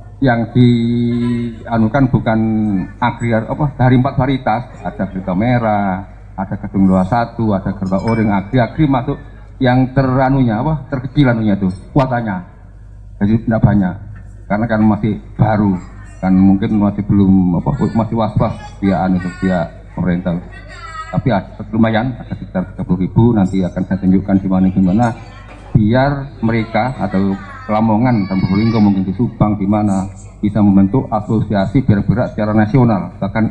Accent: native